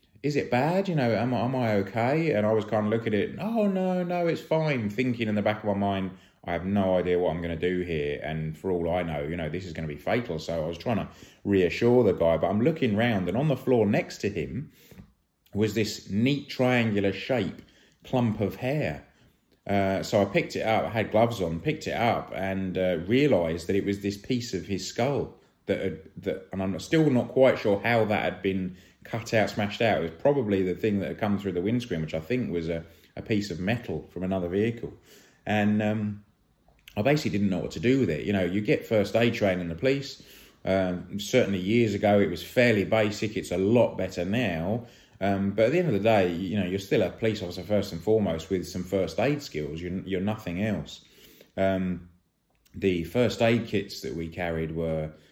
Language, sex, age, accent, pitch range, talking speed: English, male, 30-49, British, 90-115 Hz, 230 wpm